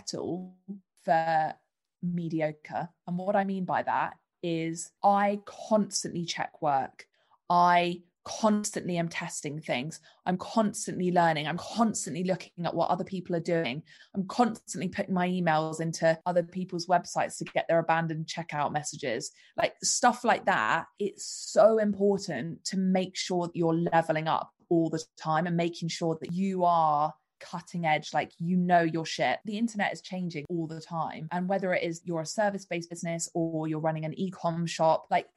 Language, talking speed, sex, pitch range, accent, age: English, 165 wpm, female, 165-185 Hz, British, 20-39